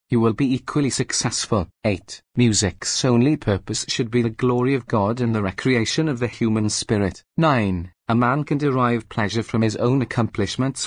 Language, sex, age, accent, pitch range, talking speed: English, male, 30-49, British, 110-130 Hz, 170 wpm